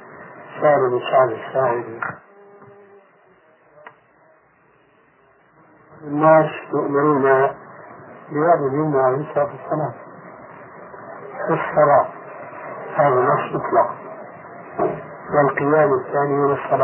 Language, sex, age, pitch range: Arabic, male, 60-79, 135-160 Hz